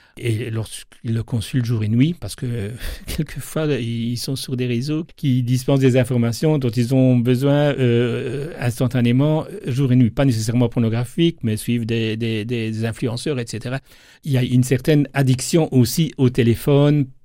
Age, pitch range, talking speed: 60-79, 120-145 Hz, 165 wpm